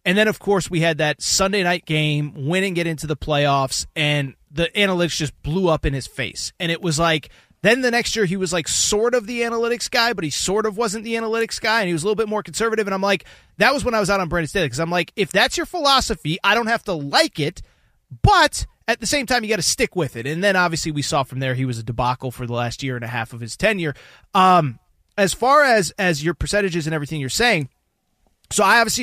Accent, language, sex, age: American, English, male, 30-49